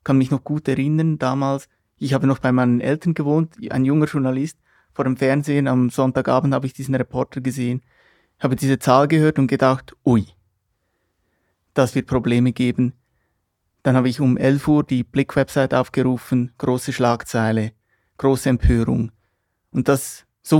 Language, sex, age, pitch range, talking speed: German, male, 30-49, 125-150 Hz, 155 wpm